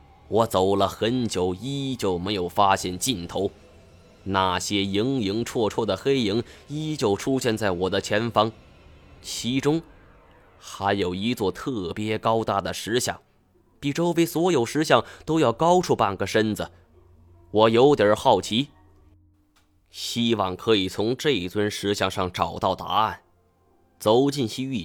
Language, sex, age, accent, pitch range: Chinese, male, 20-39, native, 95-120 Hz